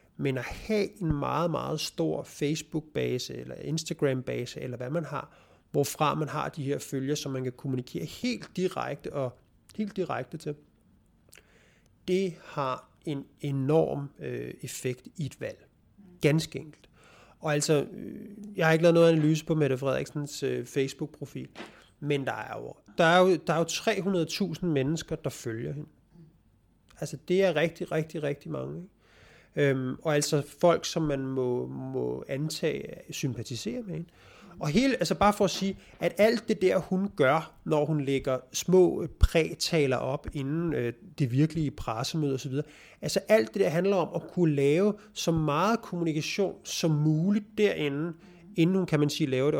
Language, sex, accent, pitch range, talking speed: Danish, male, native, 140-175 Hz, 165 wpm